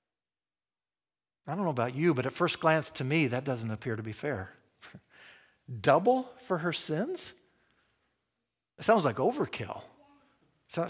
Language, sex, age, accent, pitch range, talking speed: English, male, 50-69, American, 125-165 Hz, 145 wpm